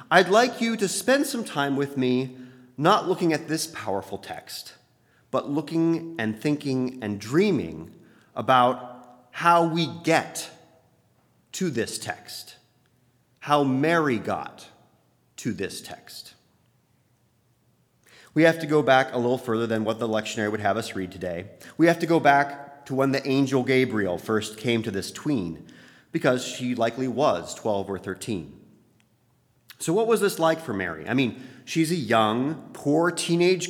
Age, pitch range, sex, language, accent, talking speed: 30-49, 115-160 Hz, male, English, American, 155 wpm